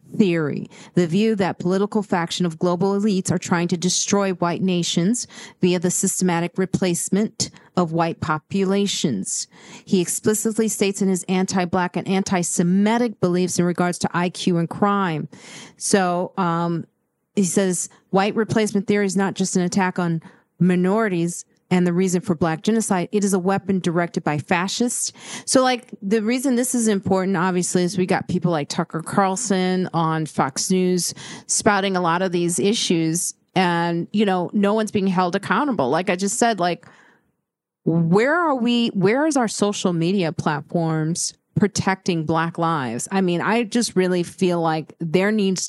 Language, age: English, 40-59